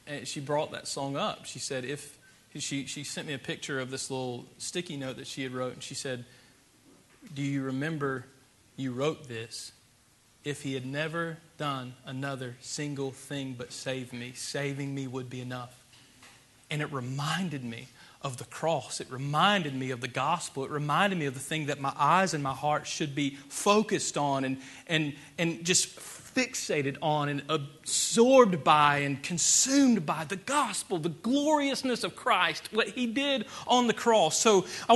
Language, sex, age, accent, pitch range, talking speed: English, male, 40-59, American, 140-215 Hz, 180 wpm